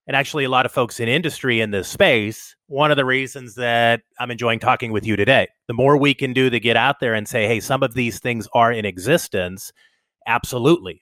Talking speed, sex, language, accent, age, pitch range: 230 wpm, male, English, American, 30-49, 115-140 Hz